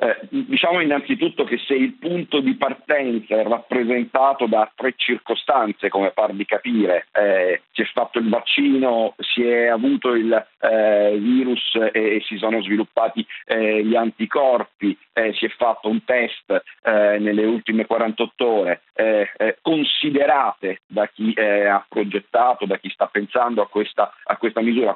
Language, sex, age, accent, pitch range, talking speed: Italian, male, 50-69, native, 110-125 Hz, 155 wpm